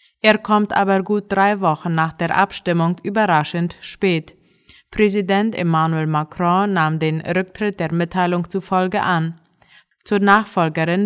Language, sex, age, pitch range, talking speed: German, female, 20-39, 165-195 Hz, 125 wpm